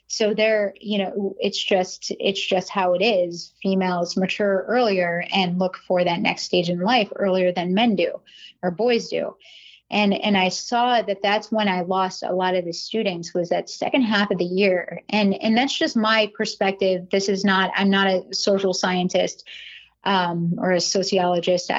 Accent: American